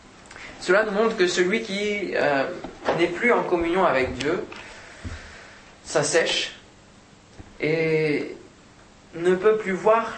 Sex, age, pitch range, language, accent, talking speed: male, 20-39, 145-190 Hz, French, French, 110 wpm